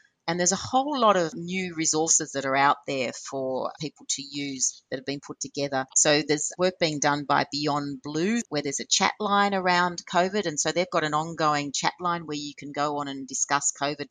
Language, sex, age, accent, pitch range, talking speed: English, female, 40-59, Australian, 140-170 Hz, 220 wpm